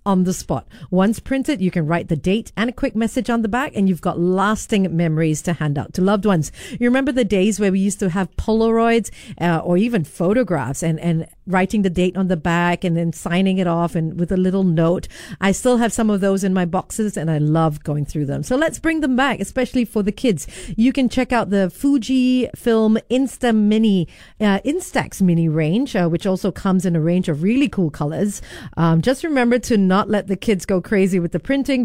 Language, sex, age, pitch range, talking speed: English, female, 40-59, 175-230 Hz, 230 wpm